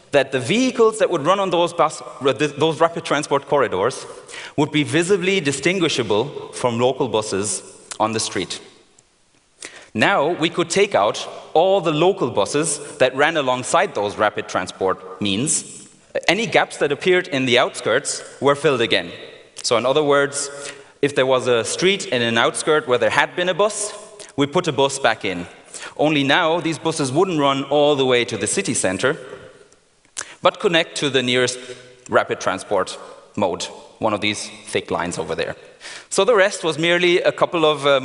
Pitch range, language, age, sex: 130-180 Hz, Chinese, 30-49, male